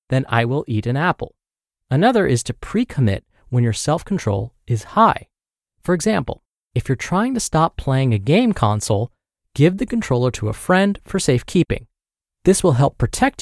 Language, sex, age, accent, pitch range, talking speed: English, male, 20-39, American, 115-180 Hz, 170 wpm